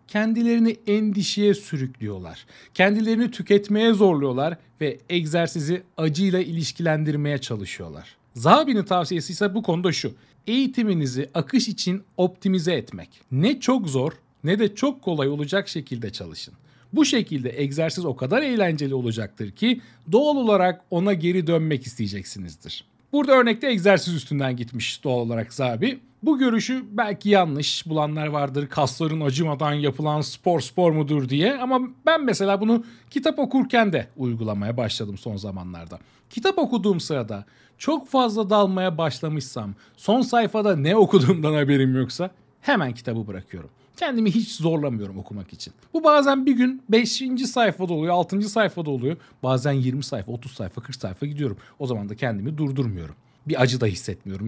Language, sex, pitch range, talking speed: Turkish, male, 130-210 Hz, 140 wpm